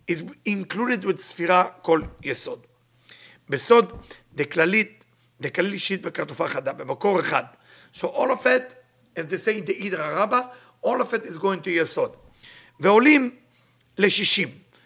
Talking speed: 140 wpm